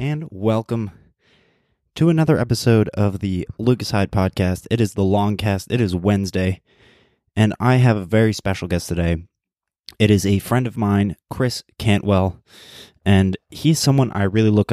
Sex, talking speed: male, 165 wpm